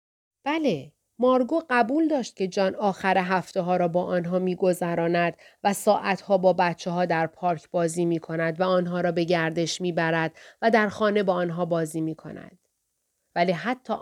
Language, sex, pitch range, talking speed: Persian, female, 180-245 Hz, 175 wpm